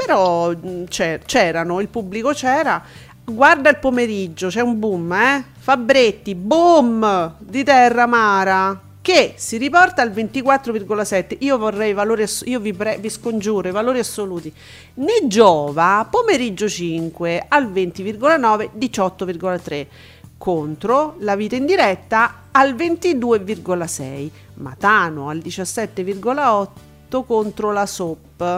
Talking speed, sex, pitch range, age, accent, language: 115 wpm, female, 190-255 Hz, 40-59, native, Italian